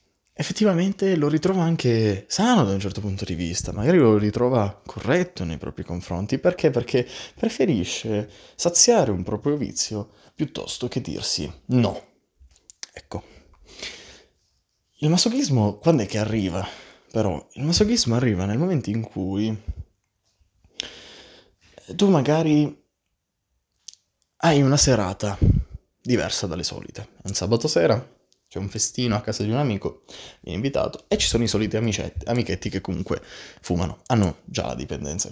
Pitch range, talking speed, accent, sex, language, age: 95-140 Hz, 135 wpm, native, male, Italian, 20-39